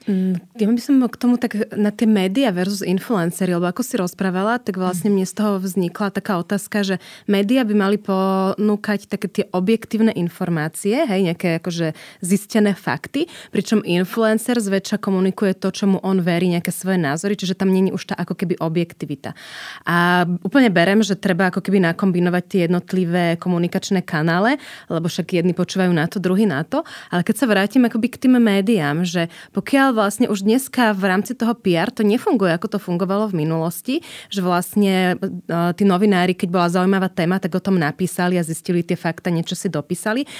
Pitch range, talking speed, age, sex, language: 175-210 Hz, 185 wpm, 20-39, female, Slovak